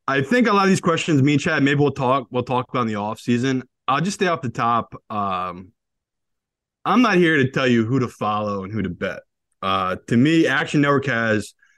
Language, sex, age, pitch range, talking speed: English, male, 20-39, 110-145 Hz, 235 wpm